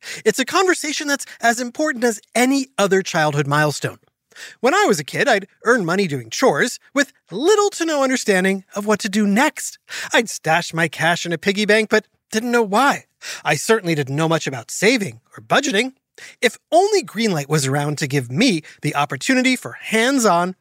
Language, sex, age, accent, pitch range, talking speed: English, male, 30-49, American, 165-255 Hz, 185 wpm